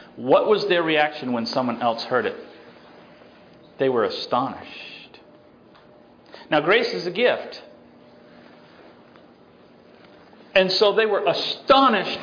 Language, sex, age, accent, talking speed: English, male, 40-59, American, 110 wpm